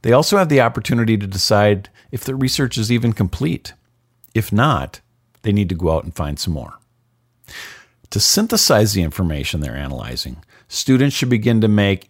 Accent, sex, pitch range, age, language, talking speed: American, male, 90-125 Hz, 50-69, English, 175 wpm